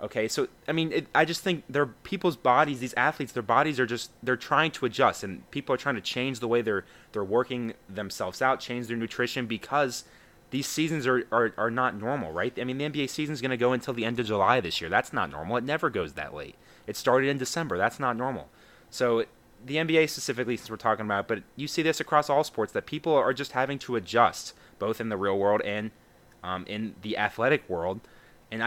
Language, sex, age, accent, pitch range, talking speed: English, male, 20-39, American, 110-140 Hz, 230 wpm